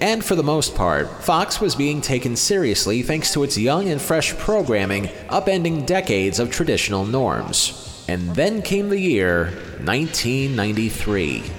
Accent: American